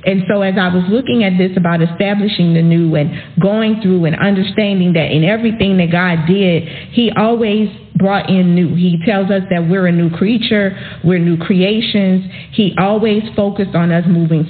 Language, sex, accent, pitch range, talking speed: English, female, American, 170-200 Hz, 185 wpm